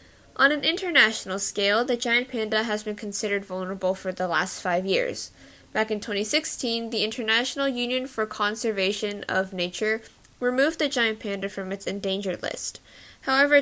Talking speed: 155 wpm